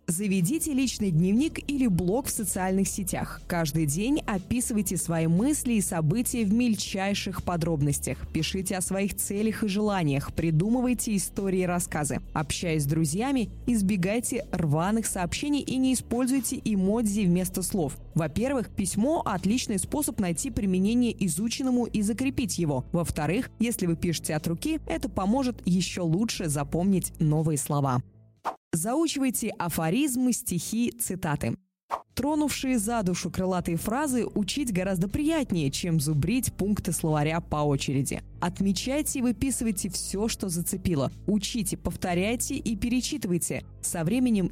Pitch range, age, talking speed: 175-245 Hz, 20-39, 125 wpm